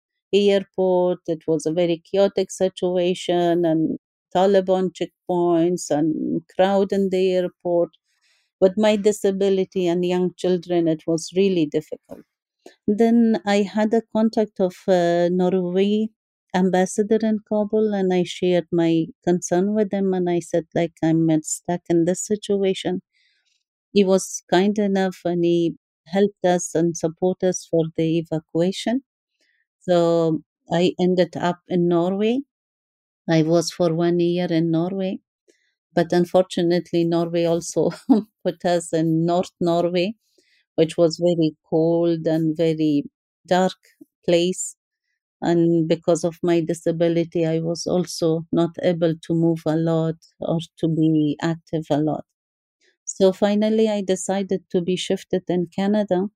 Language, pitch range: English, 170-195 Hz